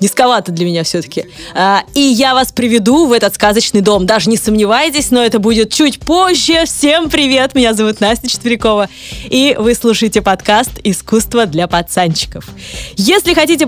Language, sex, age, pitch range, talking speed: Russian, female, 20-39, 205-265 Hz, 155 wpm